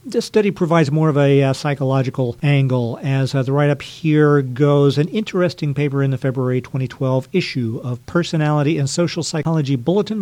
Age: 50-69